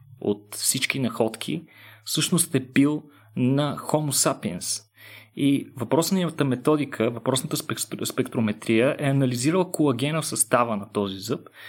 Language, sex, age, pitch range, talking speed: Bulgarian, male, 30-49, 115-155 Hz, 115 wpm